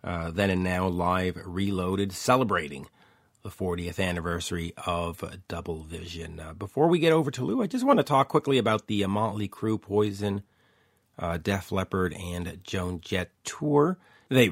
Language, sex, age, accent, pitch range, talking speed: English, male, 40-59, American, 90-130 Hz, 165 wpm